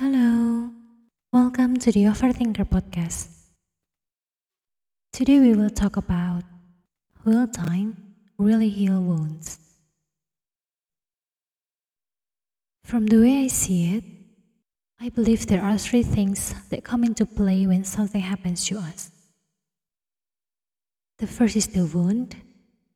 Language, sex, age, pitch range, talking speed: English, female, 20-39, 180-220 Hz, 110 wpm